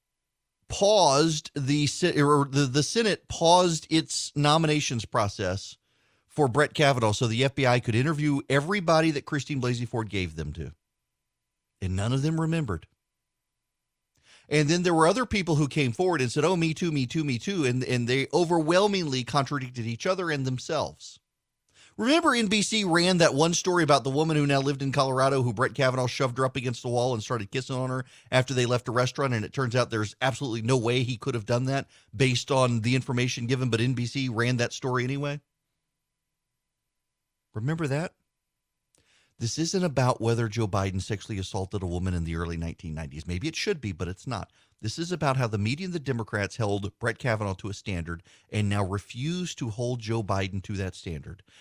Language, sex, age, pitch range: English, male, 40-59, 115-160 Hz